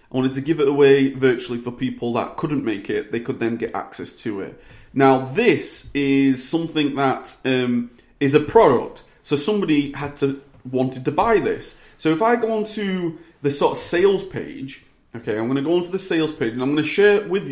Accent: British